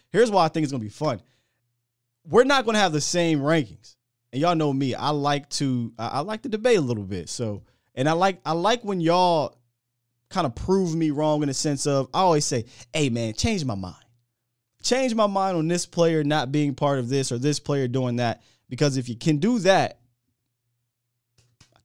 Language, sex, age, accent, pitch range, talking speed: English, male, 20-39, American, 115-145 Hz, 210 wpm